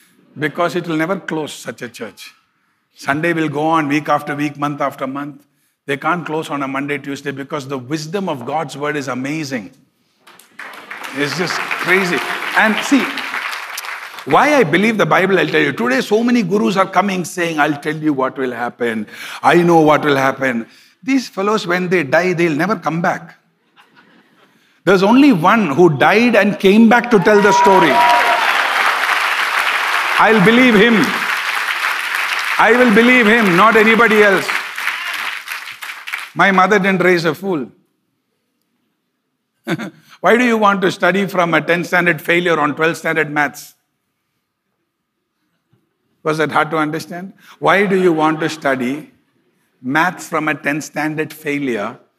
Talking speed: 155 wpm